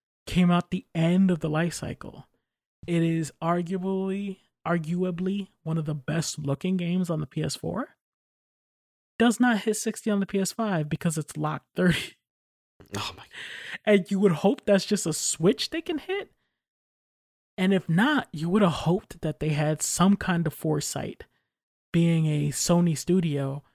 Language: English